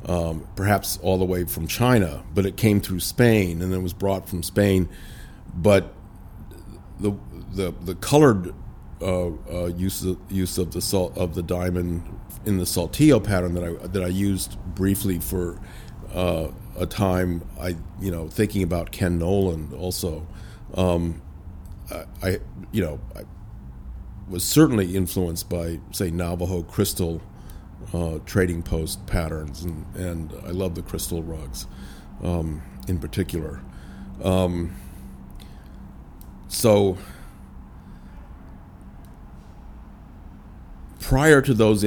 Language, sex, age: English, male, 50-69